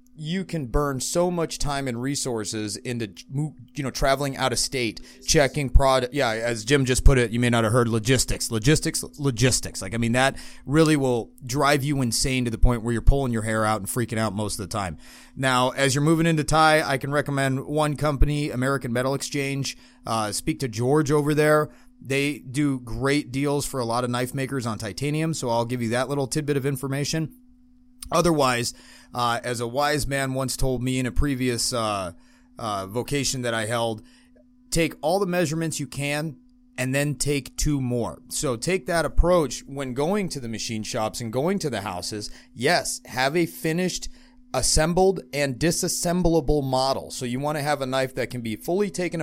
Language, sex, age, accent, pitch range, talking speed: English, male, 30-49, American, 120-150 Hz, 195 wpm